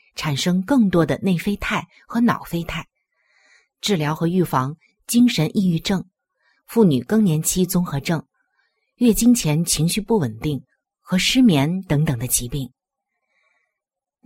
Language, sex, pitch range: Chinese, female, 155-220 Hz